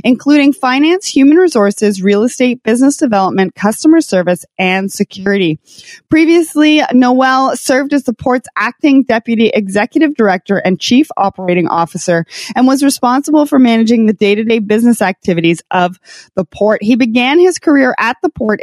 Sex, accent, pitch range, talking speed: female, American, 200-270 Hz, 145 wpm